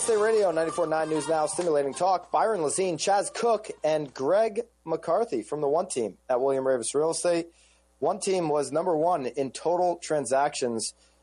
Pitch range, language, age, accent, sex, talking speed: 125-155 Hz, English, 30-49, American, male, 165 wpm